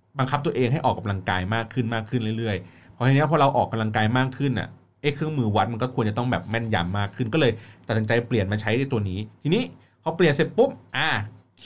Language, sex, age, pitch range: Thai, male, 30-49, 105-140 Hz